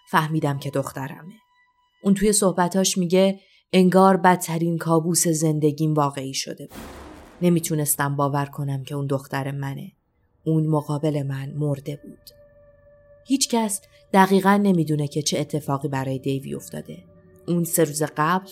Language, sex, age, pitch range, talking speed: Persian, female, 30-49, 145-195 Hz, 125 wpm